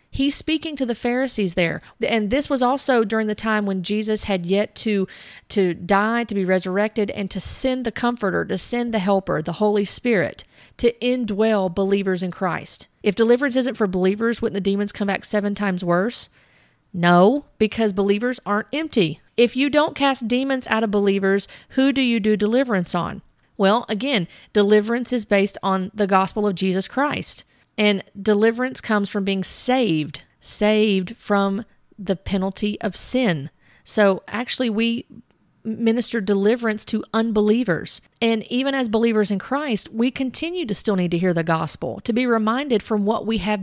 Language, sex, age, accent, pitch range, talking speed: English, female, 40-59, American, 195-245 Hz, 170 wpm